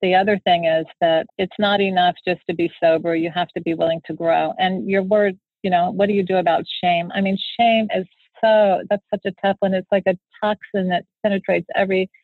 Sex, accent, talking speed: female, American, 230 wpm